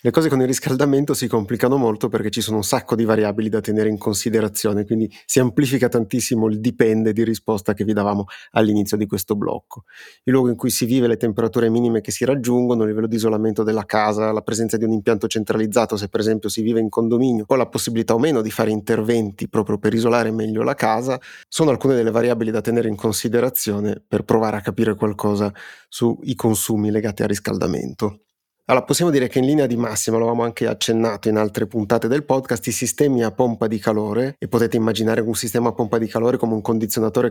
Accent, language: native, Italian